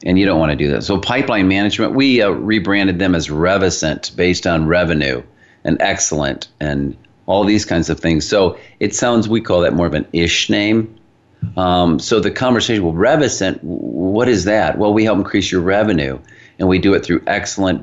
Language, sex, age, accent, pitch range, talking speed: English, male, 40-59, American, 85-105 Hz, 200 wpm